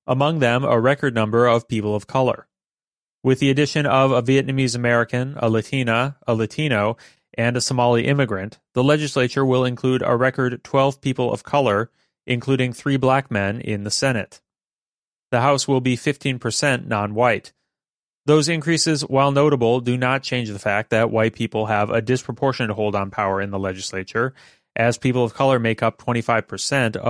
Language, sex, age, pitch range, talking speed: English, male, 30-49, 110-135 Hz, 170 wpm